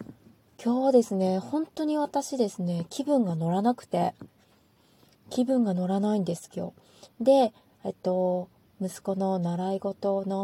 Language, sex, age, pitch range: Japanese, female, 20-39, 190-255 Hz